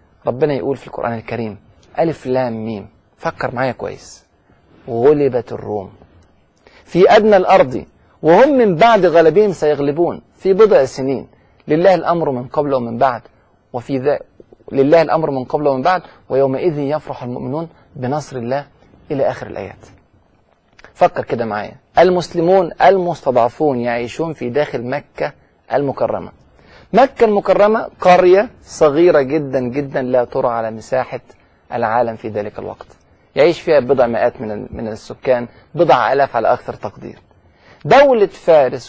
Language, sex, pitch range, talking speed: Arabic, male, 115-155 Hz, 130 wpm